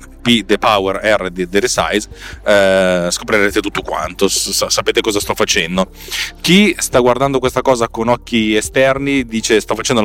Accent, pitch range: native, 100-125 Hz